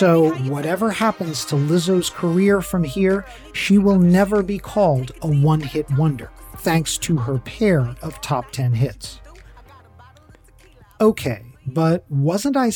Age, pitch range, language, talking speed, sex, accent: 40-59, 130-190 Hz, English, 130 wpm, male, American